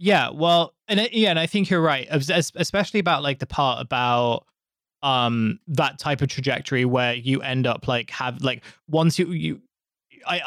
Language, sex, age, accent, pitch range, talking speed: English, male, 20-39, British, 120-145 Hz, 180 wpm